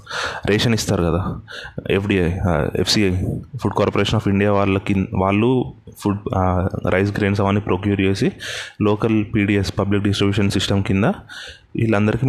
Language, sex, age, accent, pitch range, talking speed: Telugu, male, 20-39, native, 100-125 Hz, 120 wpm